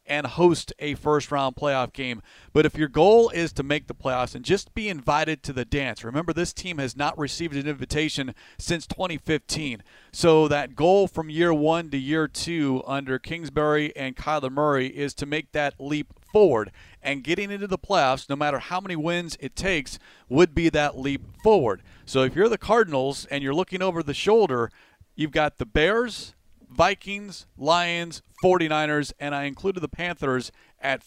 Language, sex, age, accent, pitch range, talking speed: English, male, 40-59, American, 140-170 Hz, 180 wpm